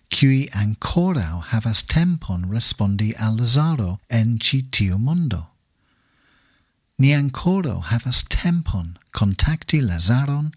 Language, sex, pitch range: English, male, 100-130 Hz